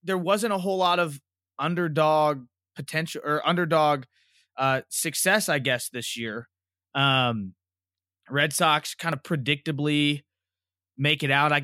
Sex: male